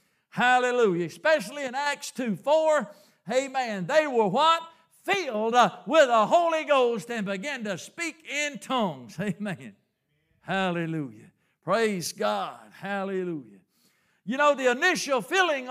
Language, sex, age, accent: English, male, 60-79, American